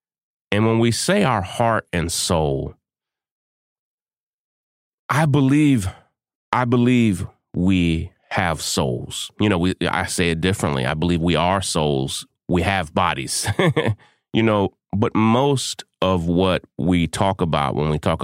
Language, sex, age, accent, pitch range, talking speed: English, male, 30-49, American, 85-115 Hz, 140 wpm